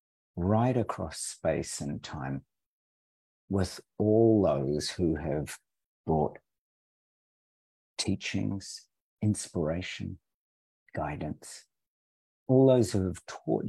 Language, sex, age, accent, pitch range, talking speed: English, male, 50-69, British, 75-95 Hz, 85 wpm